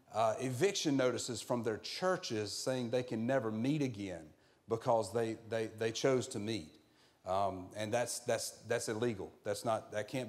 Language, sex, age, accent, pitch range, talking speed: English, male, 40-59, American, 115-150 Hz, 170 wpm